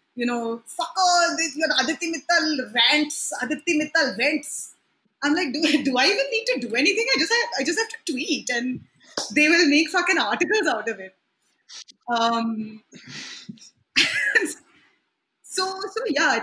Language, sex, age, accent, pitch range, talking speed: English, female, 20-39, Indian, 225-305 Hz, 165 wpm